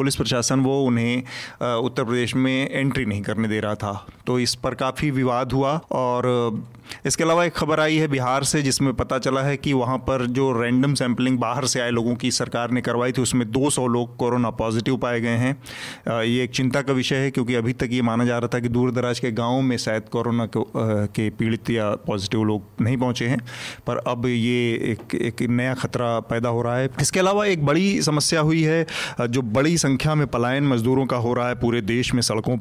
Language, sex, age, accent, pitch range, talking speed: Hindi, male, 30-49, native, 120-135 Hz, 210 wpm